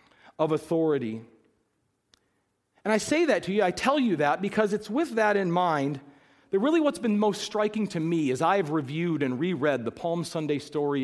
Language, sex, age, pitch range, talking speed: English, male, 40-59, 140-210 Hz, 190 wpm